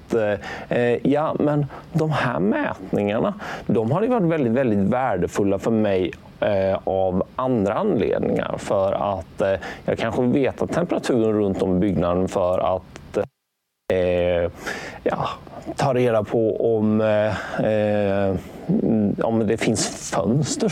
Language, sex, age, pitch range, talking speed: Swedish, male, 30-49, 95-130 Hz, 120 wpm